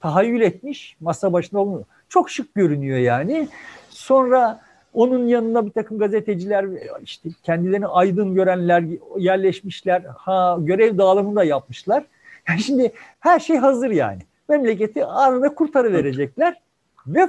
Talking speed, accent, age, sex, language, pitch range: 120 wpm, native, 50-69, male, Turkish, 175-270 Hz